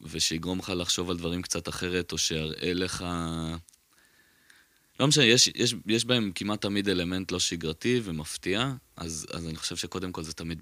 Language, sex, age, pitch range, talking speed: Hebrew, male, 20-39, 80-90 Hz, 170 wpm